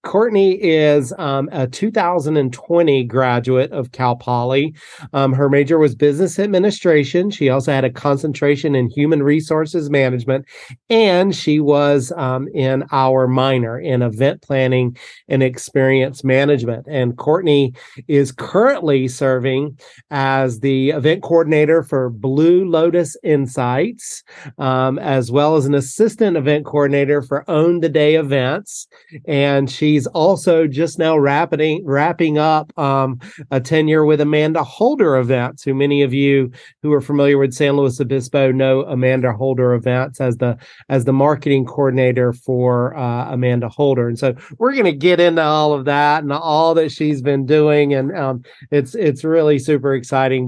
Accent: American